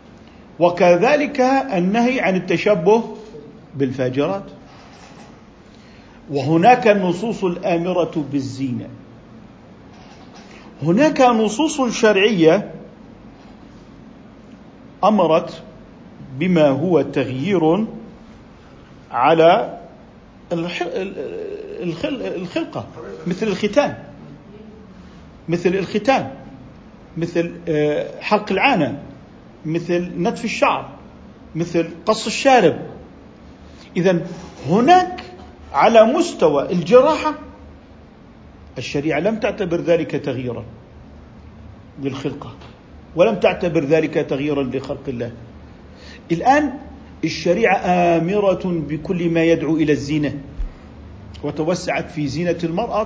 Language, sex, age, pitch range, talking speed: Arabic, male, 50-69, 150-220 Hz, 70 wpm